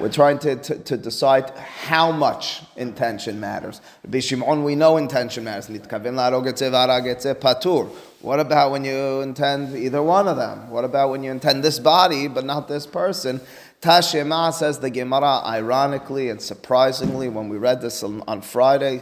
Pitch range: 125-160 Hz